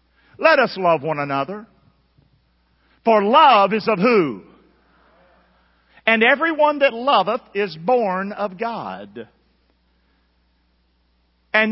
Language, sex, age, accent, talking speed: English, male, 50-69, American, 95 wpm